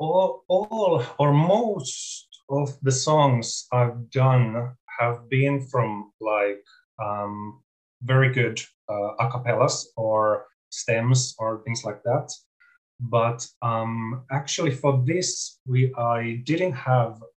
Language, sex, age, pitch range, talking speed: English, male, 30-49, 115-140 Hz, 115 wpm